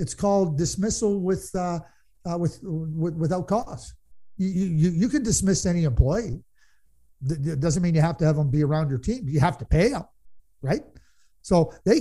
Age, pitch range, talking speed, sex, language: 50-69, 150-195 Hz, 185 wpm, male, English